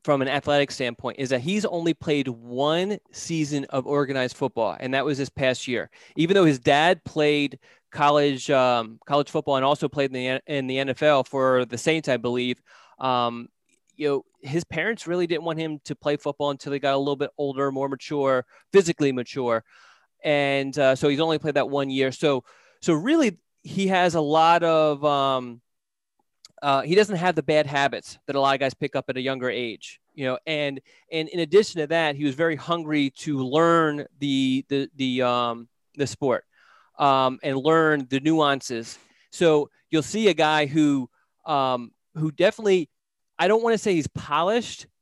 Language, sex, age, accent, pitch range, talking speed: English, male, 20-39, American, 135-160 Hz, 190 wpm